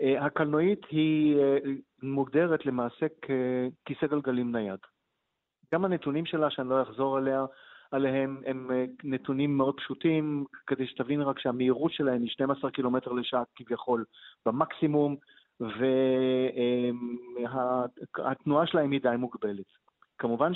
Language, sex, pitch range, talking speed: Hebrew, male, 120-145 Hz, 105 wpm